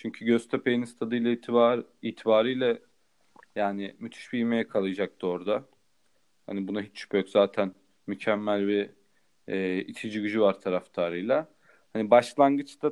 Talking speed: 130 wpm